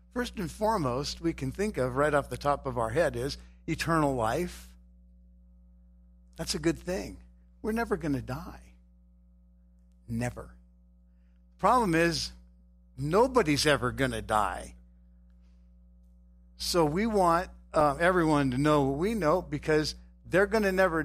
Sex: male